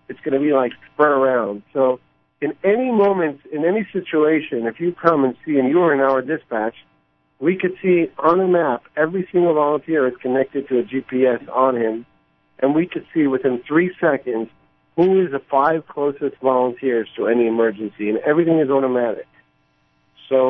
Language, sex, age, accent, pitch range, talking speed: English, male, 50-69, American, 125-160 Hz, 180 wpm